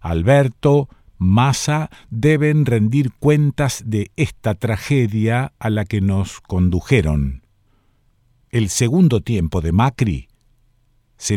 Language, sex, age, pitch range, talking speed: Spanish, male, 50-69, 100-140 Hz, 100 wpm